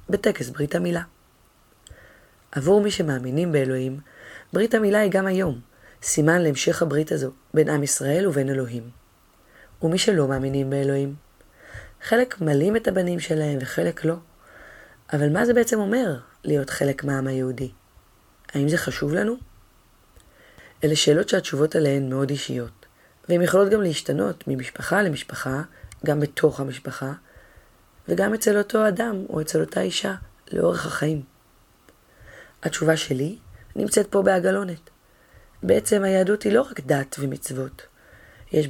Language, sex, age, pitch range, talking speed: Hebrew, female, 30-49, 135-180 Hz, 130 wpm